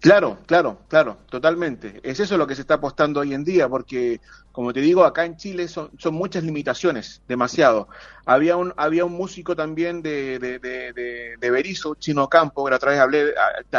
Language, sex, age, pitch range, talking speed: Spanish, male, 30-49, 130-170 Hz, 185 wpm